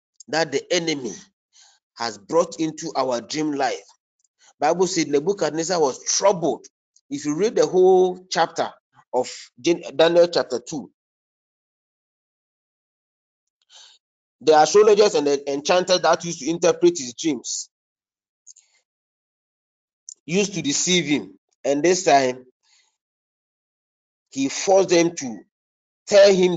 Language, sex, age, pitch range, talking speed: English, male, 40-59, 130-180 Hz, 110 wpm